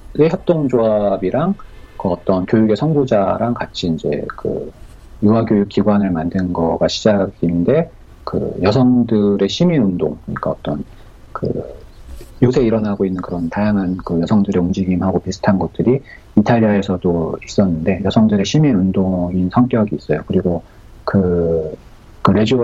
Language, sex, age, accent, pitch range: Korean, male, 40-59, native, 95-115 Hz